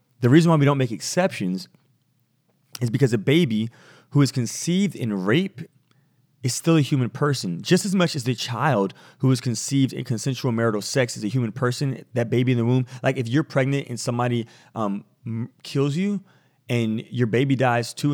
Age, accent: 30-49, American